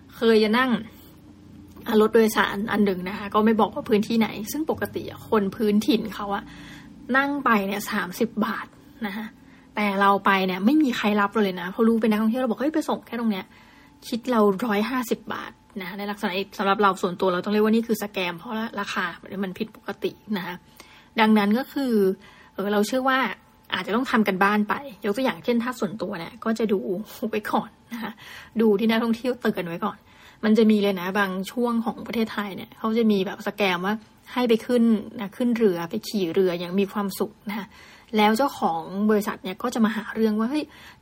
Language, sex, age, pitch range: Thai, female, 20-39, 200-230 Hz